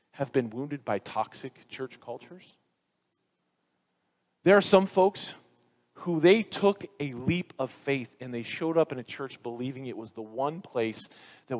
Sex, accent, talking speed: male, American, 165 wpm